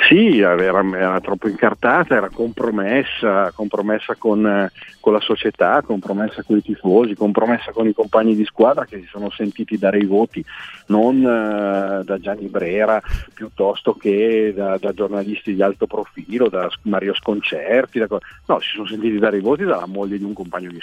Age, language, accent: 40-59, Italian, native